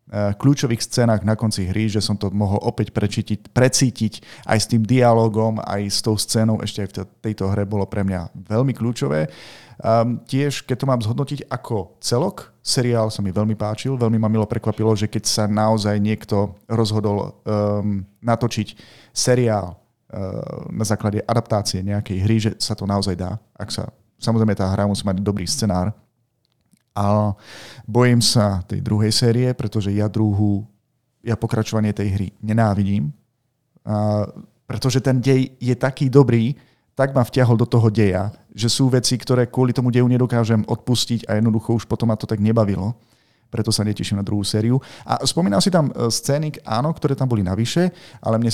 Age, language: 30-49, Slovak